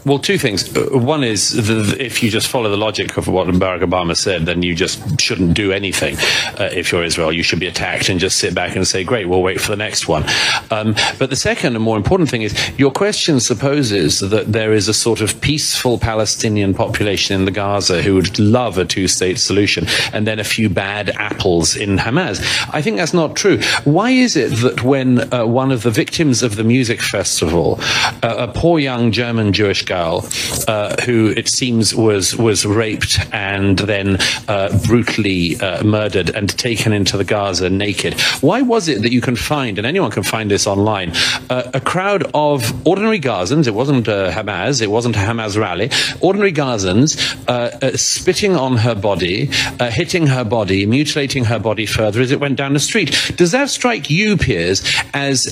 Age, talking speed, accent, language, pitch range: 40-59, 195 wpm, British, English, 100-135 Hz